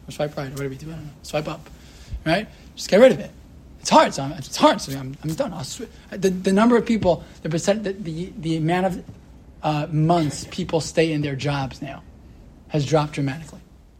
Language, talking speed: English, 225 wpm